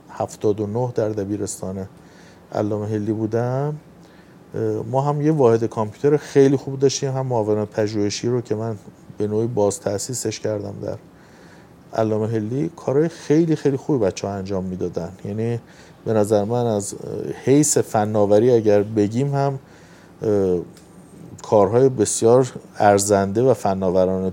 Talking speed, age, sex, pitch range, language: 125 wpm, 50-69, male, 105-140 Hz, Persian